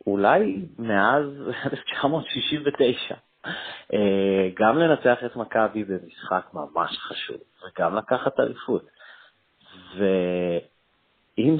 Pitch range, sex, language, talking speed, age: 100-125 Hz, male, Hebrew, 70 wpm, 30-49